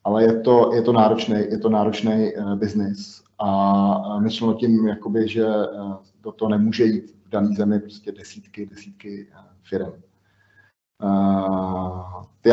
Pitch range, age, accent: 100-110 Hz, 30-49, native